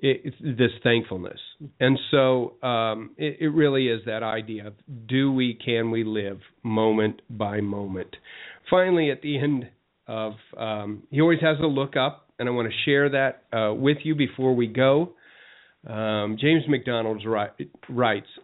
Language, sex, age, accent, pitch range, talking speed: English, male, 40-59, American, 115-145 Hz, 160 wpm